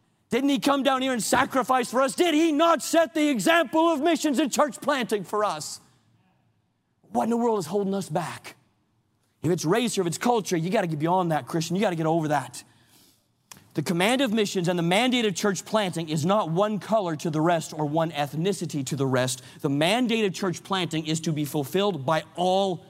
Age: 40-59